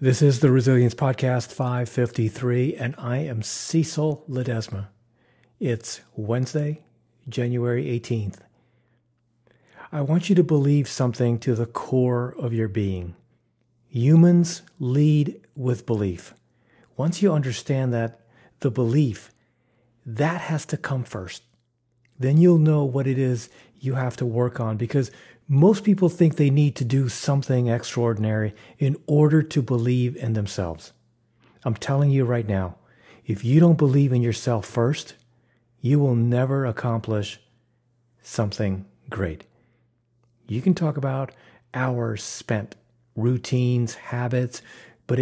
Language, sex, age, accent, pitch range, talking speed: English, male, 40-59, American, 115-140 Hz, 125 wpm